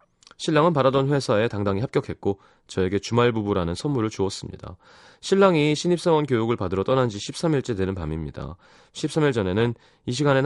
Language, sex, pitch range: Korean, male, 90-130 Hz